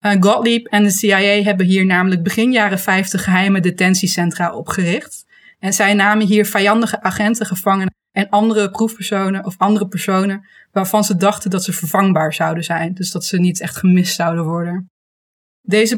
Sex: female